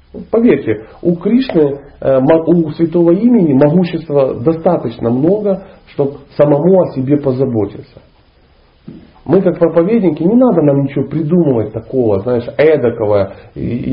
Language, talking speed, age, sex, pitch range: Russian, 110 wpm, 40-59, male, 125-185 Hz